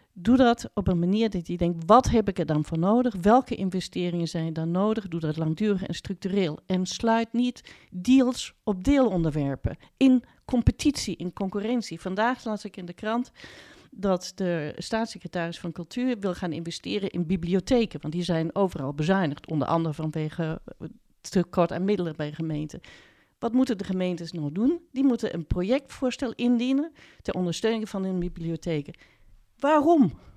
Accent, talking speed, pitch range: Dutch, 160 wpm, 170-235 Hz